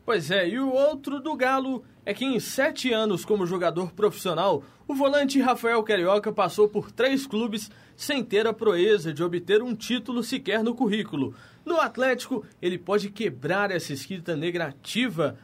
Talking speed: 165 wpm